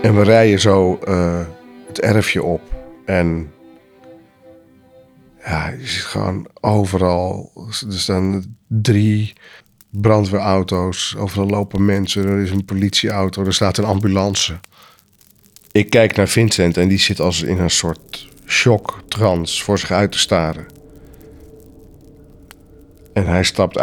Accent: Dutch